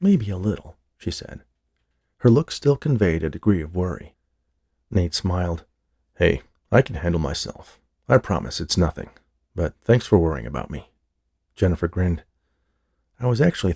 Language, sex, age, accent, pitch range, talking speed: English, male, 40-59, American, 80-105 Hz, 155 wpm